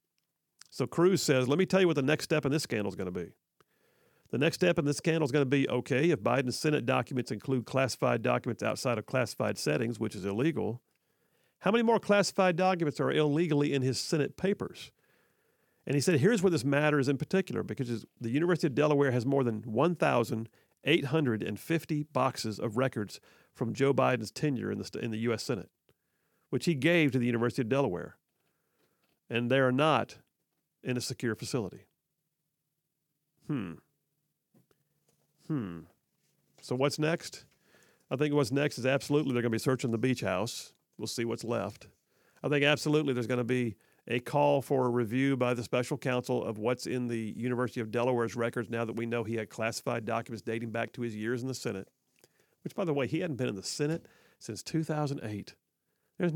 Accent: American